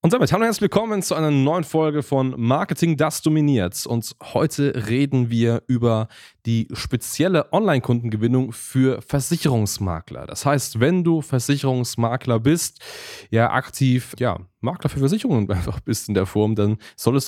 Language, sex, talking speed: German, male, 145 wpm